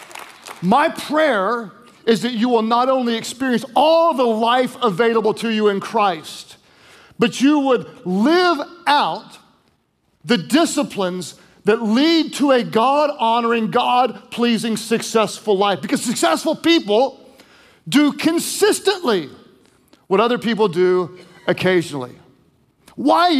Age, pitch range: 40-59, 210-265 Hz